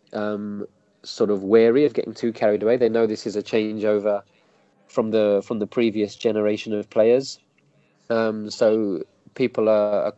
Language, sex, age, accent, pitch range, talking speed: English, male, 20-39, British, 105-120 Hz, 165 wpm